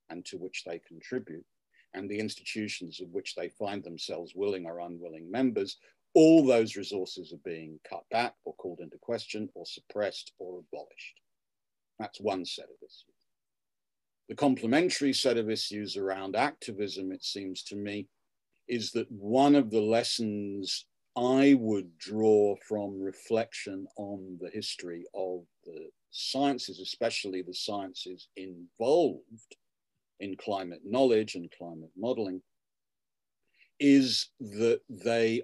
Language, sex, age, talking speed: English, male, 50-69, 130 wpm